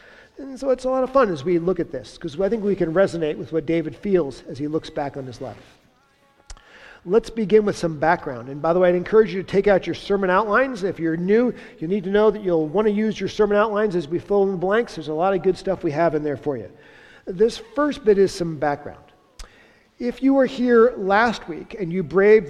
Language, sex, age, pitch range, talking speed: English, male, 50-69, 165-215 Hz, 255 wpm